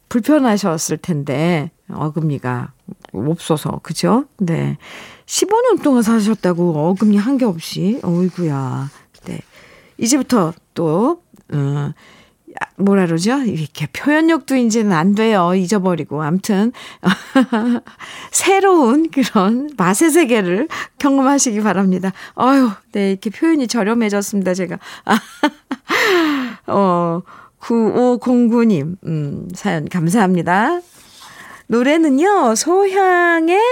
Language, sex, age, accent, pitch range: Korean, female, 50-69, native, 175-265 Hz